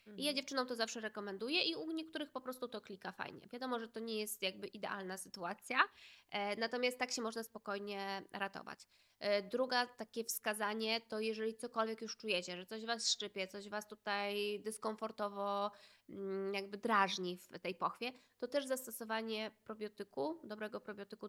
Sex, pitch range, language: female, 190-220 Hz, Polish